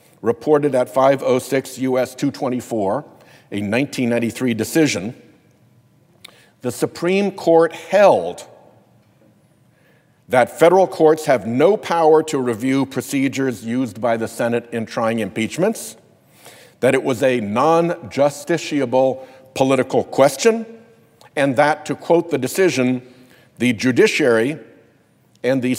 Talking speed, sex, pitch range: 105 wpm, male, 125-160 Hz